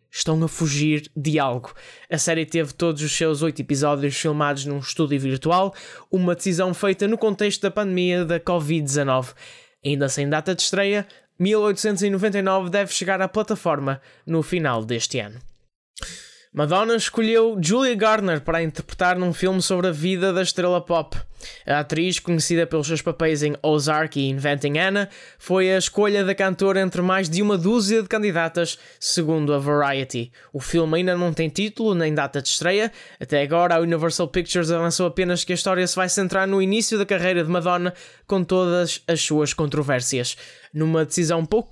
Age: 20-39